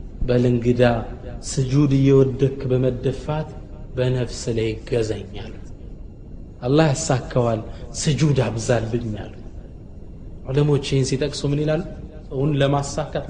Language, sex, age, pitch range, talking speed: Amharic, male, 30-49, 115-160 Hz, 70 wpm